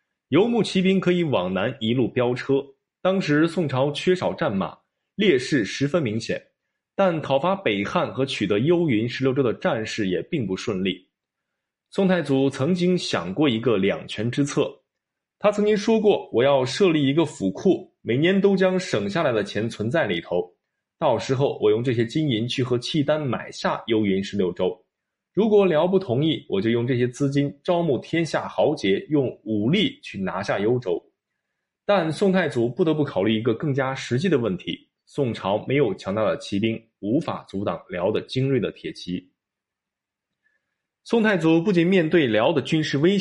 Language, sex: Chinese, male